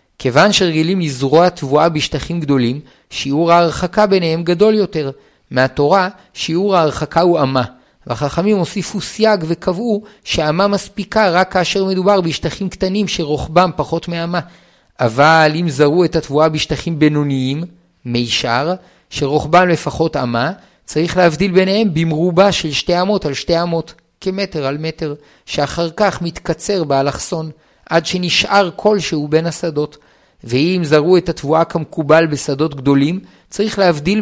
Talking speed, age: 125 wpm, 50-69